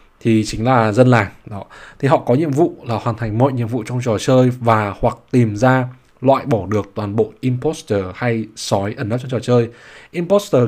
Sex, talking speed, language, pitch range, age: male, 215 wpm, Vietnamese, 110-145 Hz, 20-39